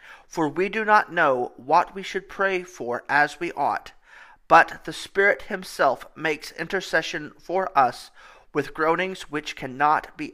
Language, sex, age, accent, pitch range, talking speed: English, male, 40-59, American, 150-185 Hz, 150 wpm